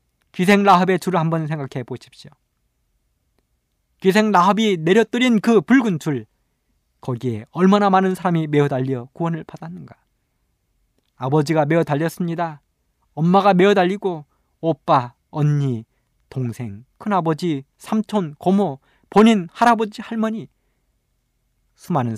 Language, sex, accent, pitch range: Korean, male, native, 120-200 Hz